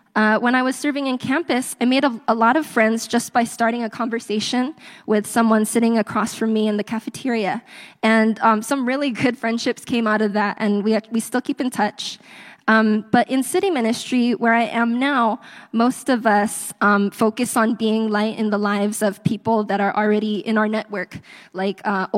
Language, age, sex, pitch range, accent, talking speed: English, 10-29, female, 210-235 Hz, American, 205 wpm